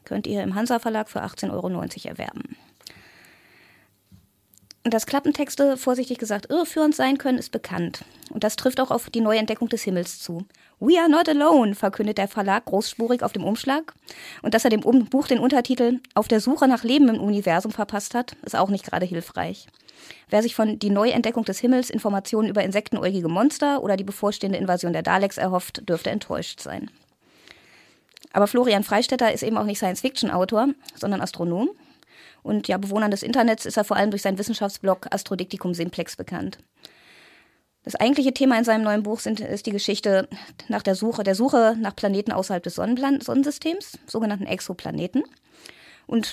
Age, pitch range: 20-39, 195-250 Hz